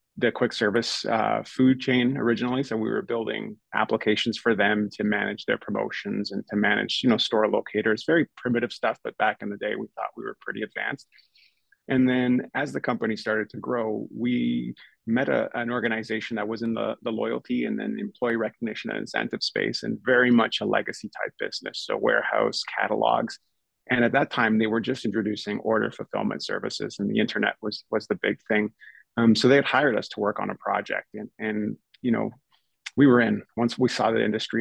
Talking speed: 205 wpm